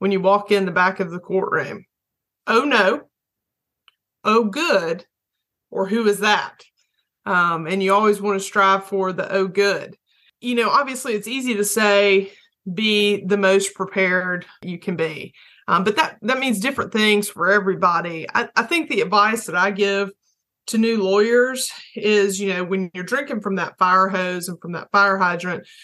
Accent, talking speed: American, 180 wpm